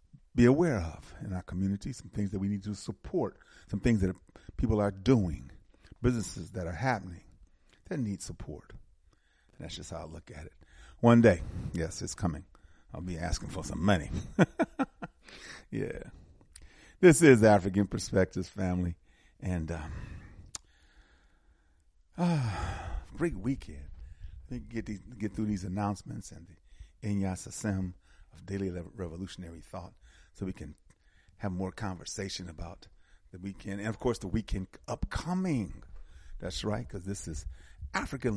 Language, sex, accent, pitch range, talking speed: English, male, American, 80-105 Hz, 140 wpm